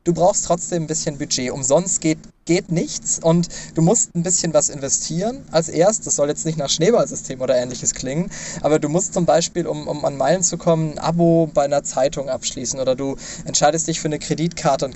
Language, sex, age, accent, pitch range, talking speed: German, male, 20-39, German, 145-175 Hz, 215 wpm